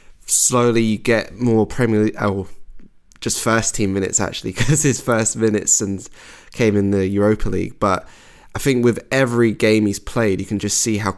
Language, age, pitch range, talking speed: English, 20-39, 95-115 Hz, 185 wpm